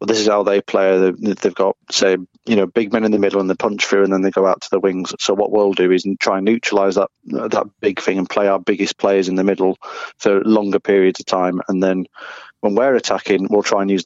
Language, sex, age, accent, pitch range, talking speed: English, male, 30-49, British, 95-105 Hz, 270 wpm